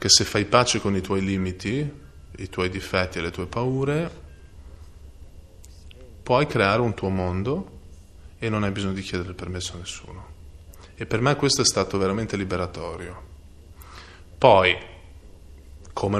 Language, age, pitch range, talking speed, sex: Italian, 20-39, 90-115 Hz, 150 wpm, male